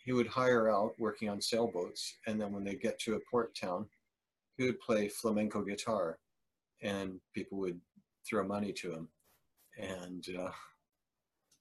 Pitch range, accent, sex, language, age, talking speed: 95-115 Hz, American, male, English, 50-69, 155 wpm